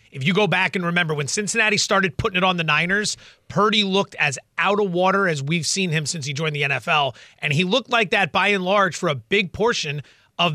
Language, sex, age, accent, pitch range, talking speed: English, male, 30-49, American, 155-205 Hz, 240 wpm